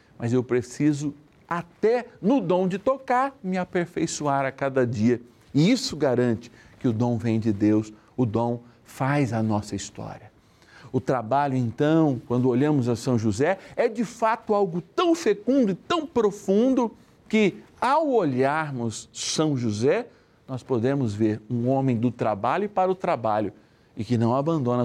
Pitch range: 115-150 Hz